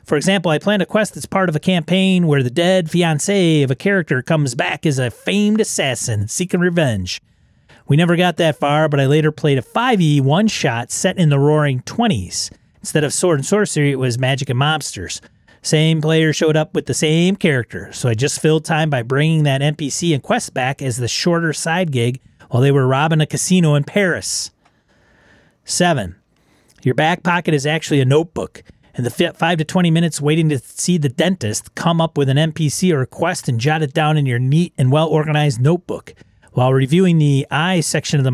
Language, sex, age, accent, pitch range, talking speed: English, male, 30-49, American, 135-170 Hz, 205 wpm